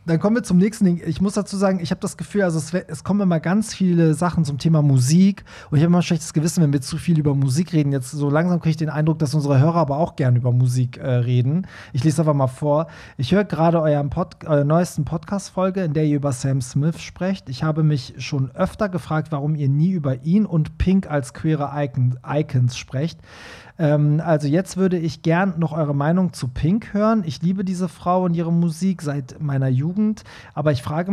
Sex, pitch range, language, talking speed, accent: male, 145-180 Hz, German, 230 wpm, German